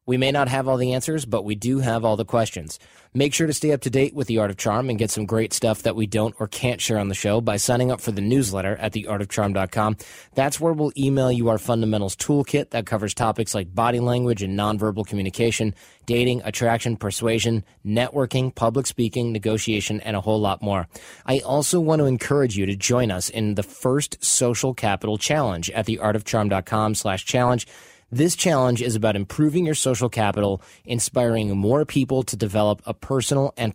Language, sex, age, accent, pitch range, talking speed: English, male, 20-39, American, 105-130 Hz, 200 wpm